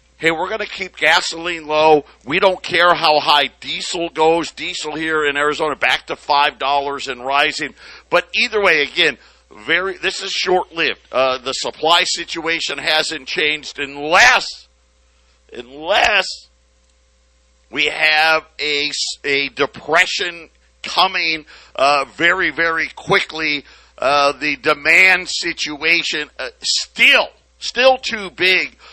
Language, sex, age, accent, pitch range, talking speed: English, male, 50-69, American, 150-195 Hz, 120 wpm